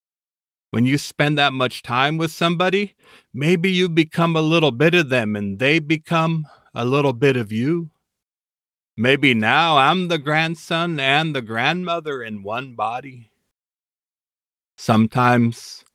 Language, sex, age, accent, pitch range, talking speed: English, male, 40-59, American, 115-155 Hz, 135 wpm